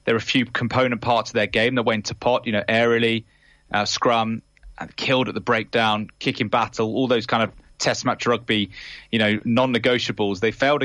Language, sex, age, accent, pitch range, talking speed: English, male, 20-39, British, 115-135 Hz, 205 wpm